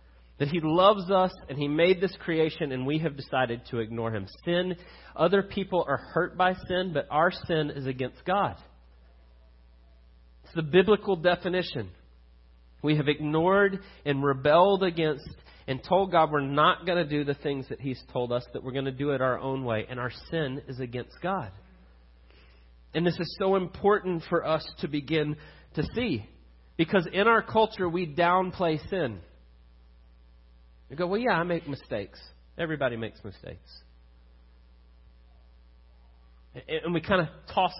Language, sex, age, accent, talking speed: English, male, 40-59, American, 160 wpm